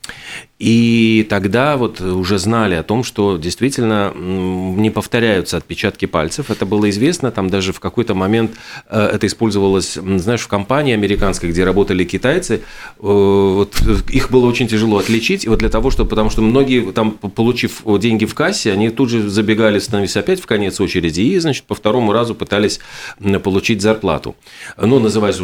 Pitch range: 90-115 Hz